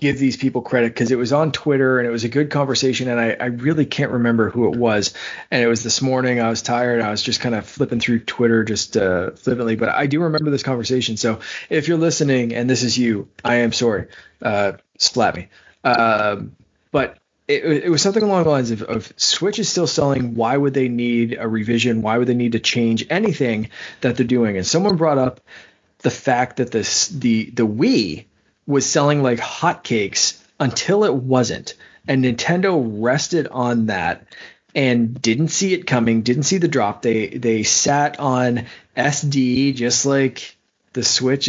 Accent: American